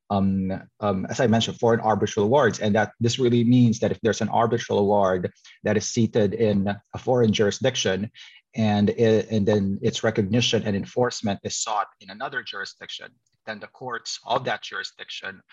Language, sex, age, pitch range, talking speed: English, male, 30-49, 105-115 Hz, 175 wpm